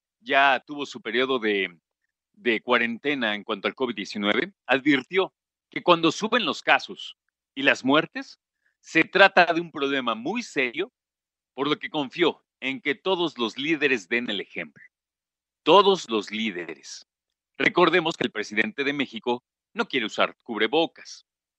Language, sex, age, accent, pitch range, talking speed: Spanish, male, 40-59, Mexican, 115-180 Hz, 145 wpm